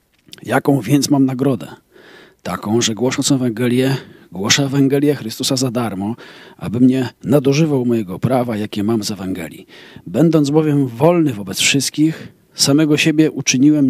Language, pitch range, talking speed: Polish, 120-145 Hz, 130 wpm